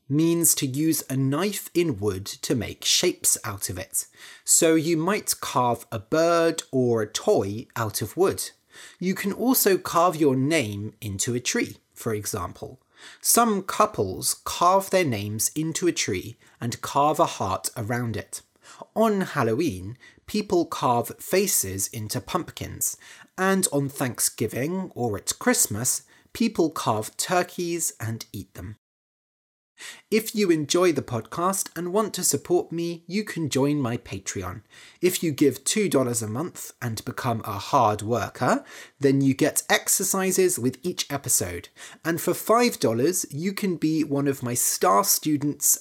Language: English